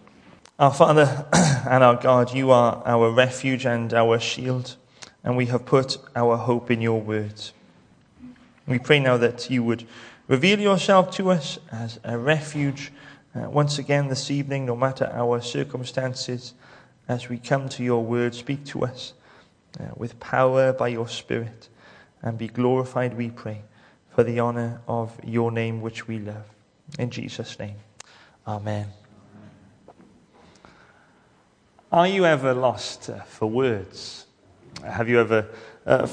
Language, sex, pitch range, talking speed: English, male, 115-145 Hz, 145 wpm